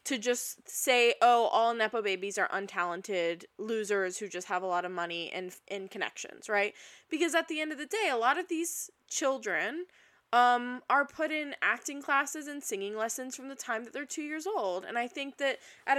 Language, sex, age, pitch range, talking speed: English, female, 20-39, 200-275 Hz, 205 wpm